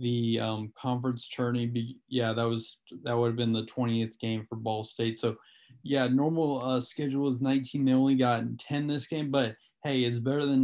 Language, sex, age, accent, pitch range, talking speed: English, male, 20-39, American, 120-135 Hz, 195 wpm